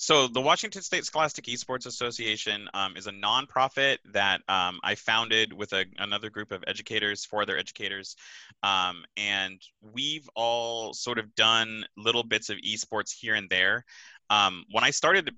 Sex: male